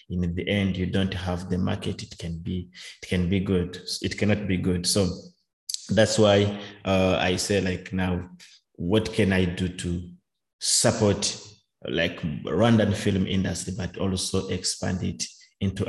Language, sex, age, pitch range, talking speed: English, male, 30-49, 90-105 Hz, 160 wpm